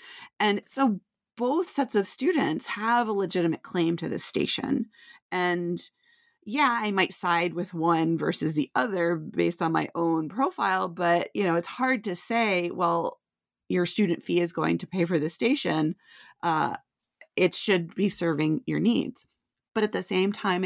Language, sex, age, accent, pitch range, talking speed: English, female, 30-49, American, 160-200 Hz, 170 wpm